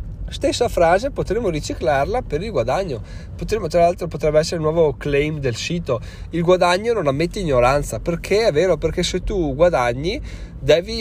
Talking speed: 165 wpm